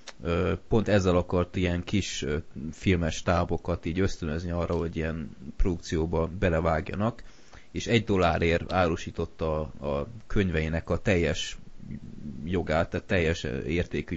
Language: Hungarian